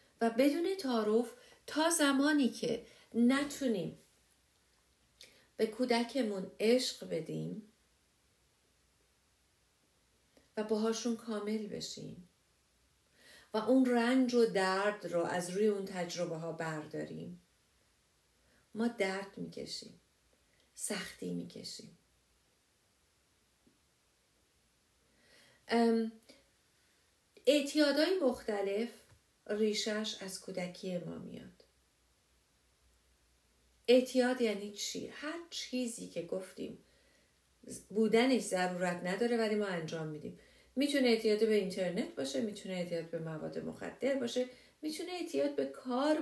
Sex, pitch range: female, 180-250 Hz